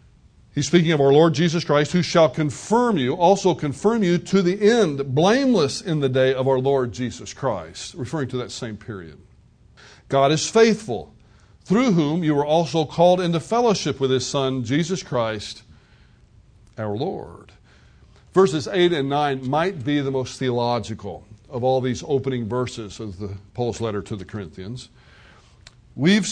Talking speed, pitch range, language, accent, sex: 160 wpm, 125-175 Hz, English, American, male